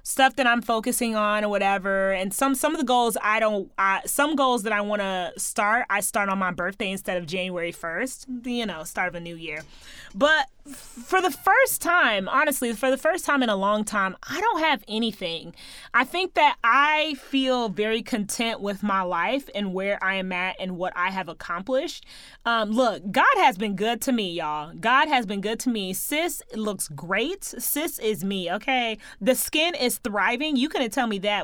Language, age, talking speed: English, 20-39, 205 wpm